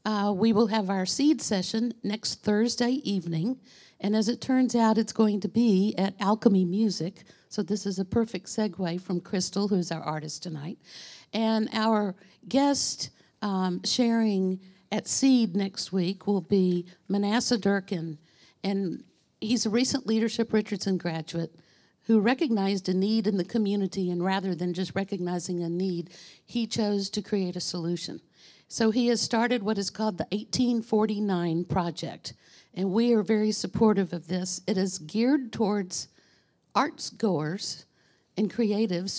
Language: English